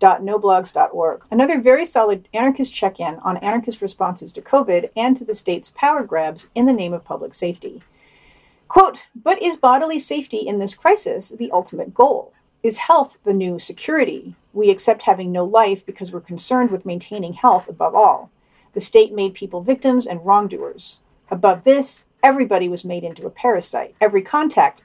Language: English